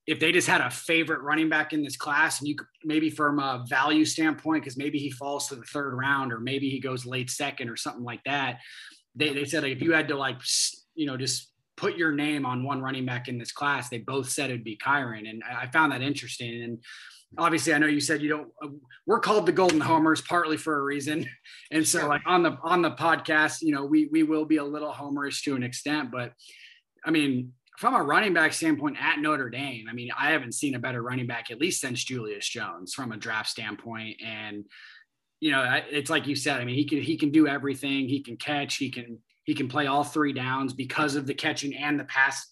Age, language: 20-39, English